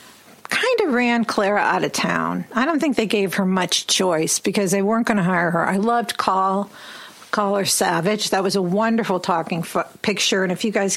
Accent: American